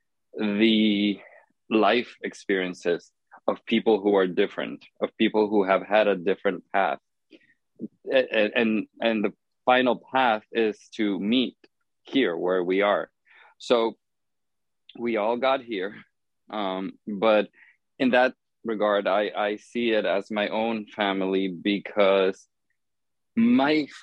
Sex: male